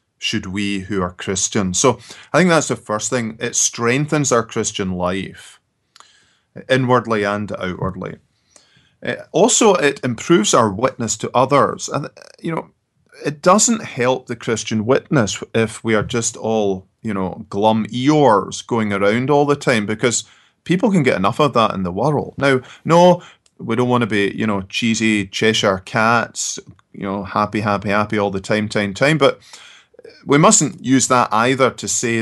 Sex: male